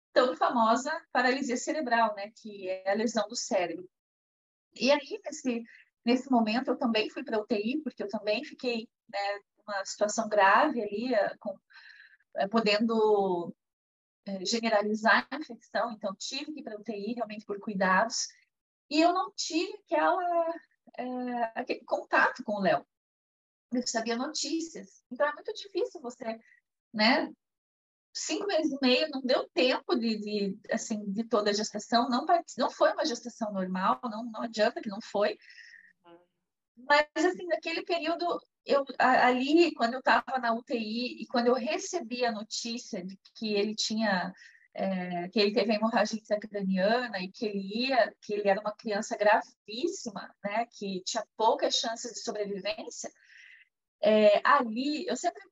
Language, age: Portuguese, 30-49